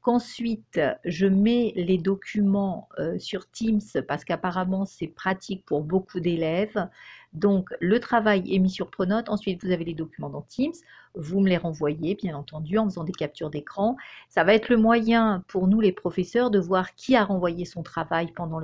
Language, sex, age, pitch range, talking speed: French, female, 50-69, 180-225 Hz, 180 wpm